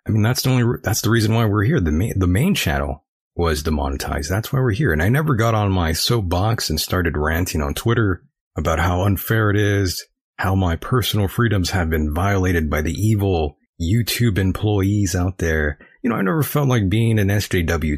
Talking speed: 205 wpm